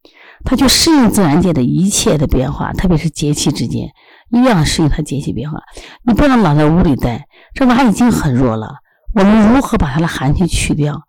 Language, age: Chinese, 50-69